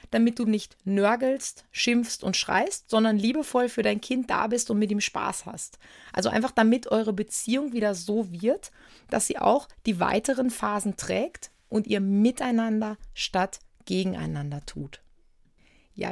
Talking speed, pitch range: 155 wpm, 195-235 Hz